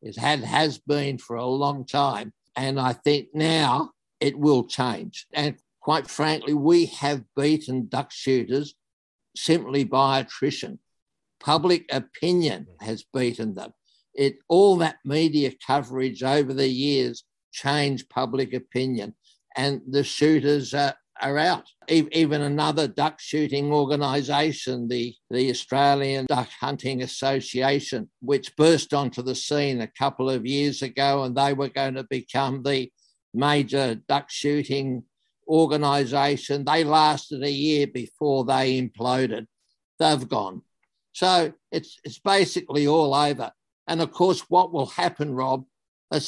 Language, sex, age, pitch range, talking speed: English, male, 60-79, 130-150 Hz, 135 wpm